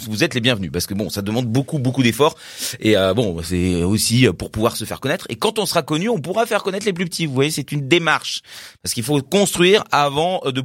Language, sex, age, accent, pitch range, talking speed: French, male, 30-49, French, 115-190 Hz, 255 wpm